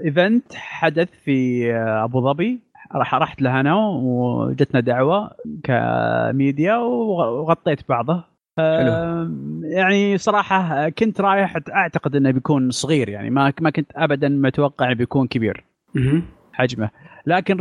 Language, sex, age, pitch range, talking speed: Arabic, male, 30-49, 125-165 Hz, 110 wpm